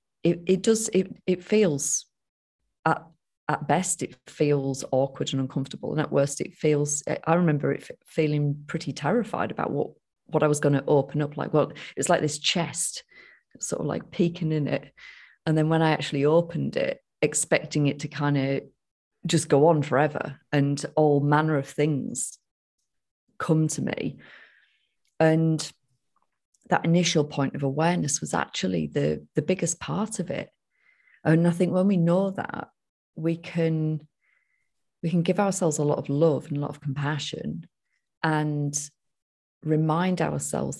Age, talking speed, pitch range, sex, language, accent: 30-49, 160 wpm, 145-170 Hz, female, English, British